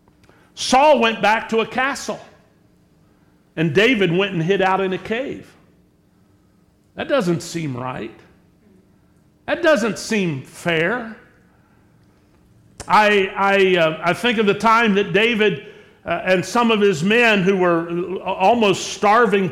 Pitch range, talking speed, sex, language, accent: 190-245 Hz, 125 wpm, male, English, American